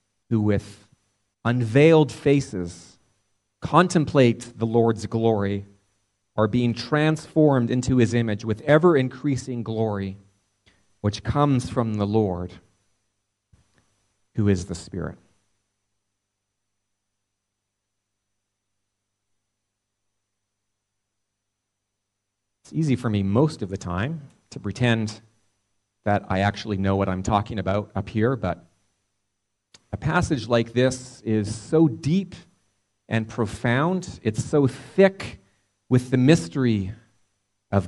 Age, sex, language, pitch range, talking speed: 40-59, male, English, 100-130 Hz, 100 wpm